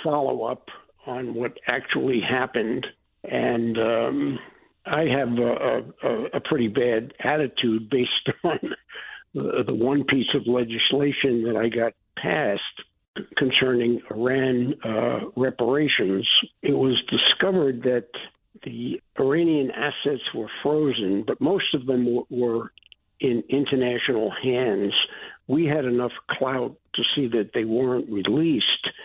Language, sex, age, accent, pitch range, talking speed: English, male, 60-79, American, 120-140 Hz, 120 wpm